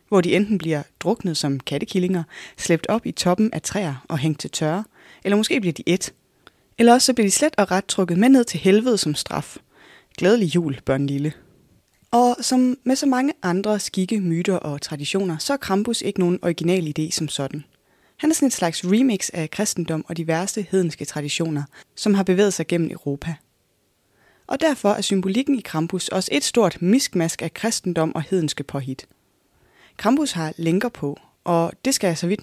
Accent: native